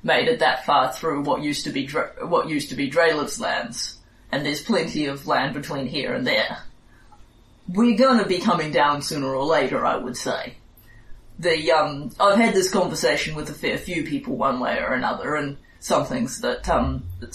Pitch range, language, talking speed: 115-170 Hz, English, 195 wpm